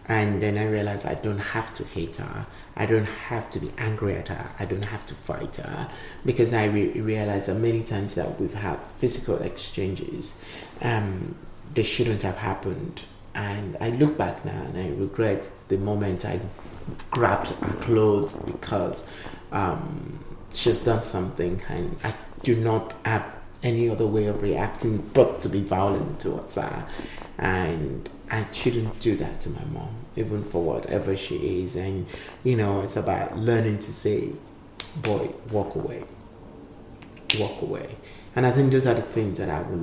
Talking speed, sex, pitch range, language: 165 wpm, male, 95-115 Hz, English